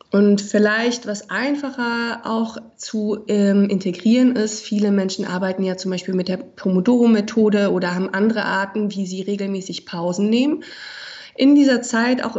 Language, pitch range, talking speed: German, 195-240 Hz, 150 wpm